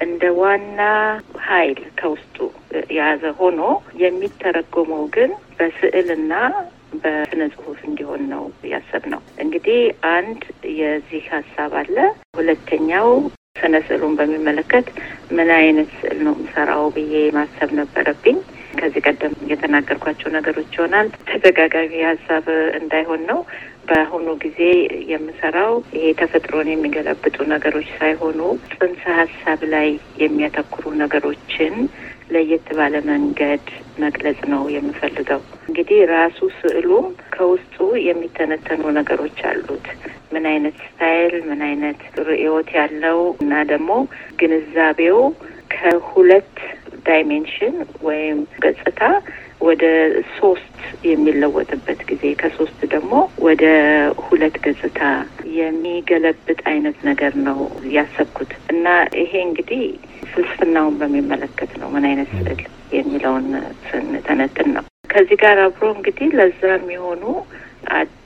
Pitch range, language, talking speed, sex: 150-200 Hz, Amharic, 65 wpm, female